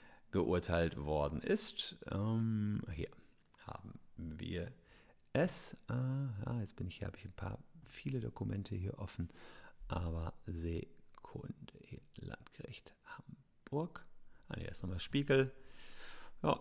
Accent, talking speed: German, 105 wpm